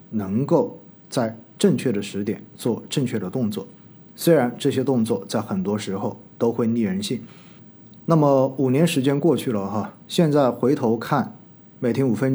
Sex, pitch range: male, 115-155 Hz